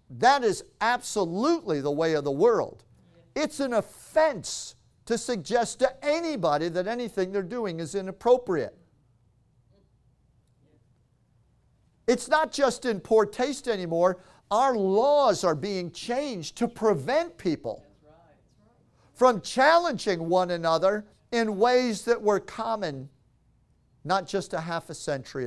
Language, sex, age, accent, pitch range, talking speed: English, male, 50-69, American, 170-245 Hz, 120 wpm